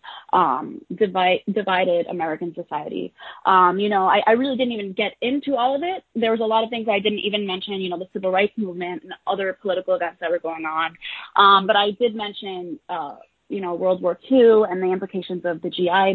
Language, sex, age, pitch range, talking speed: English, female, 20-39, 180-225 Hz, 220 wpm